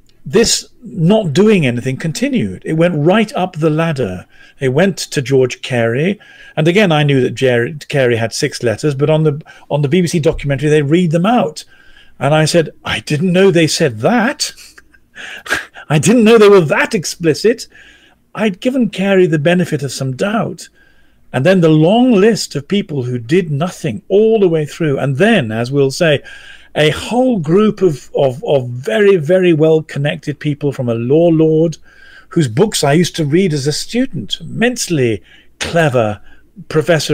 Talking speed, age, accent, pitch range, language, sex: 170 wpm, 50-69, British, 135-185 Hz, English, male